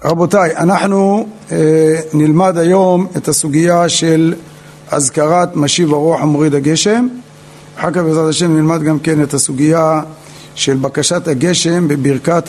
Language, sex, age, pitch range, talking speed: Hebrew, male, 50-69, 150-180 Hz, 125 wpm